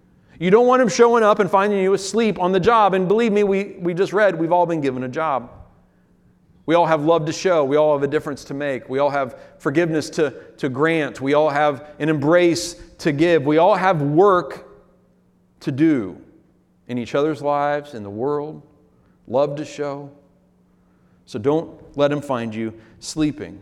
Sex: male